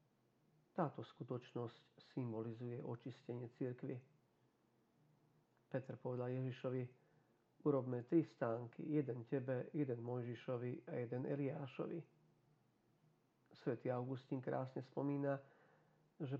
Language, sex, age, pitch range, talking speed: Slovak, male, 40-59, 120-150 Hz, 85 wpm